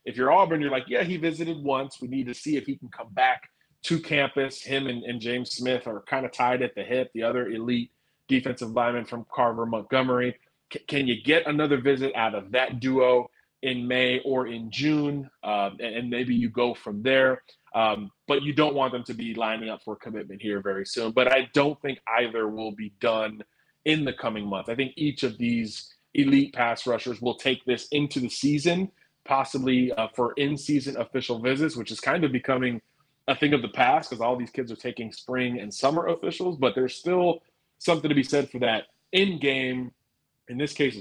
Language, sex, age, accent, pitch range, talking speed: English, male, 20-39, American, 115-140 Hz, 205 wpm